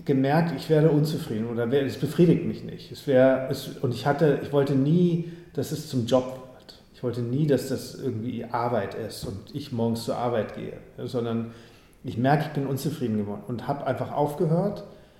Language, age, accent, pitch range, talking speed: German, 40-59, German, 120-150 Hz, 190 wpm